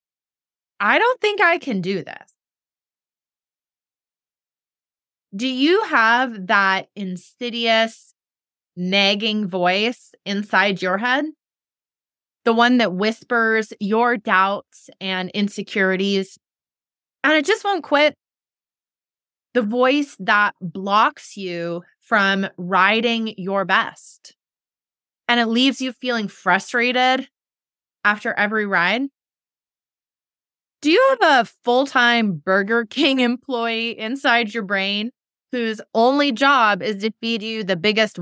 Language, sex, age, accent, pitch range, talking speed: English, female, 20-39, American, 195-255 Hz, 105 wpm